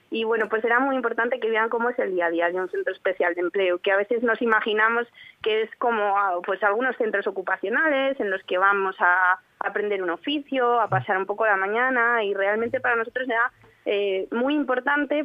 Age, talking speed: 20-39, 215 wpm